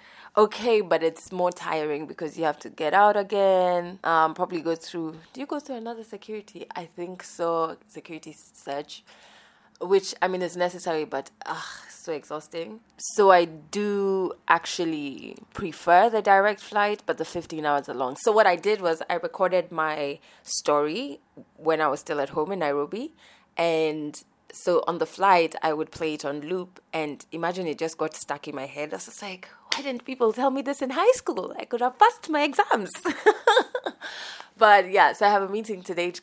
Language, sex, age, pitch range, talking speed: English, female, 20-39, 155-205 Hz, 190 wpm